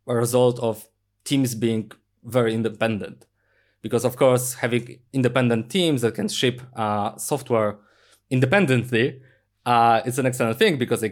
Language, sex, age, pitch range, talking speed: English, male, 20-39, 110-135 Hz, 140 wpm